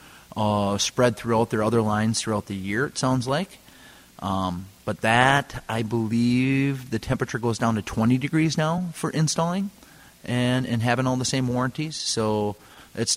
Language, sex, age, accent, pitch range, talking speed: English, male, 30-49, American, 100-120 Hz, 165 wpm